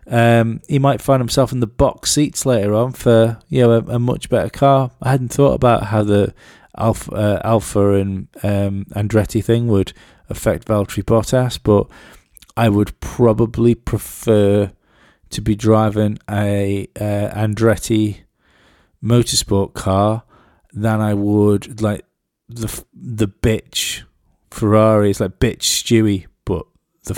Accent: British